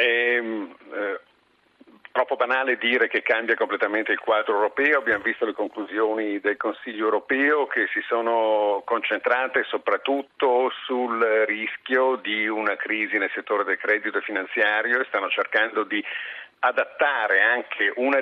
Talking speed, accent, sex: 130 wpm, native, male